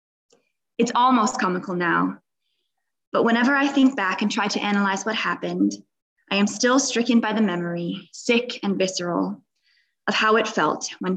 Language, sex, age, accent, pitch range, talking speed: English, female, 20-39, American, 185-235 Hz, 160 wpm